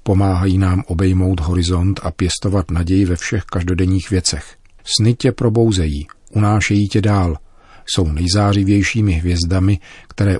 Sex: male